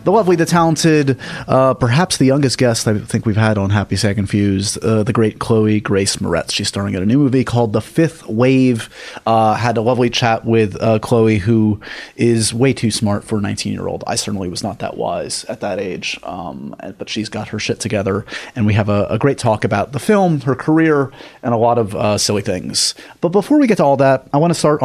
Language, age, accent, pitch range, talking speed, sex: English, 30-49, American, 105-130 Hz, 230 wpm, male